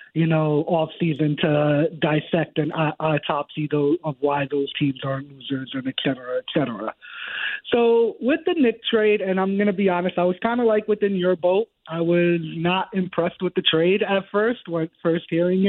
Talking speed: 190 wpm